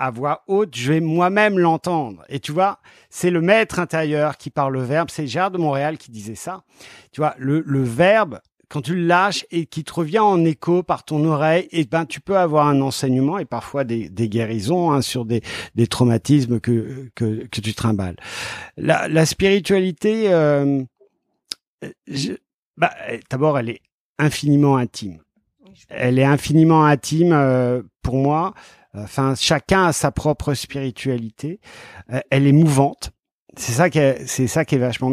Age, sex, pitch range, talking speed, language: 50-69, male, 130-165 Hz, 175 wpm, French